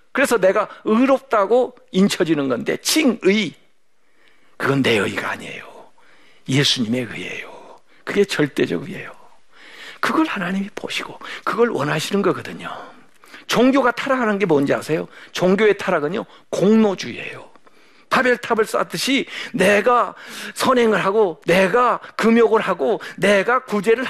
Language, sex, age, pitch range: Korean, male, 50-69, 190-245 Hz